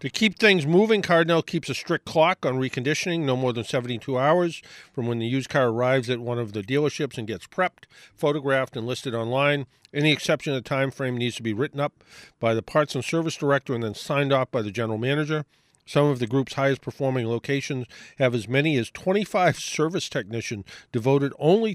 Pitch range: 120-155 Hz